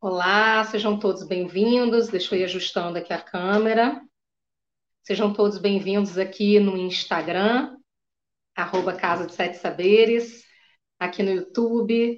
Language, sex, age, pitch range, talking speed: Portuguese, female, 40-59, 195-235 Hz, 120 wpm